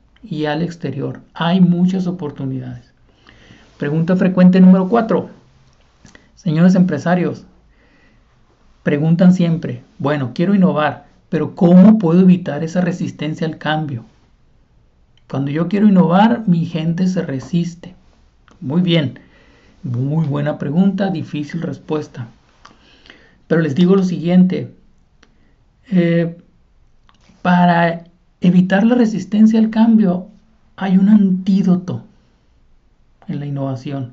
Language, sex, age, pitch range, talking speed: Spanish, male, 50-69, 150-185 Hz, 100 wpm